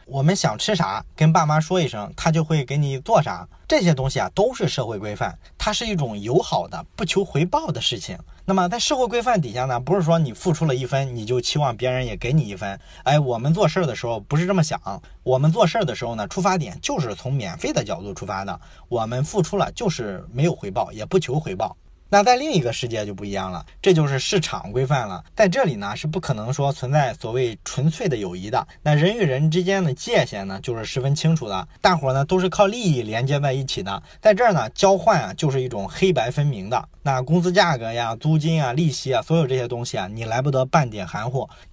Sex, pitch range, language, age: male, 125-175 Hz, Chinese, 20-39